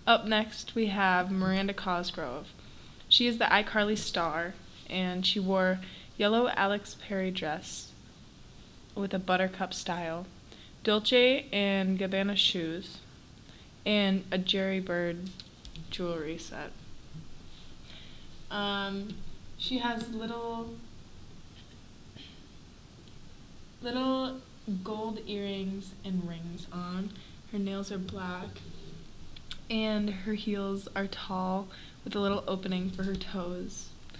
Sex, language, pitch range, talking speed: female, English, 180-205 Hz, 100 wpm